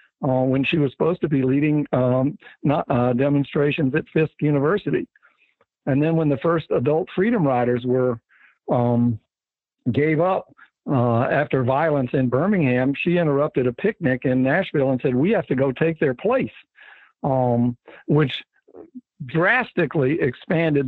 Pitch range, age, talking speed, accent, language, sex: 125-160 Hz, 60-79, 145 wpm, American, English, male